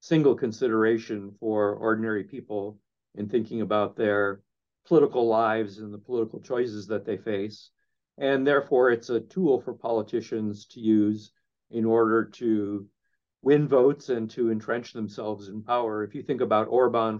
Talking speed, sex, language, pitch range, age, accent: 150 wpm, male, English, 110-125 Hz, 50-69, American